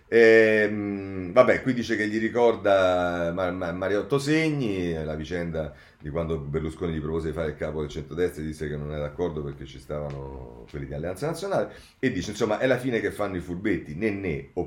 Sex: male